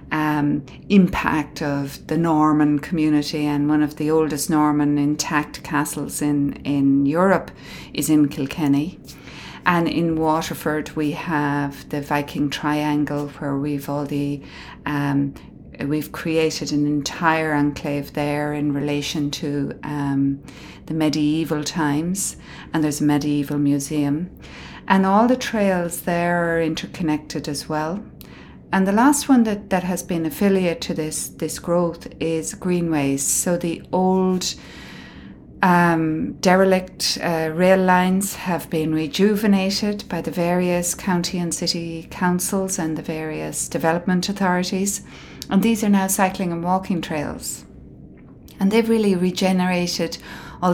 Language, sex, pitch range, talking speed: English, female, 145-180 Hz, 130 wpm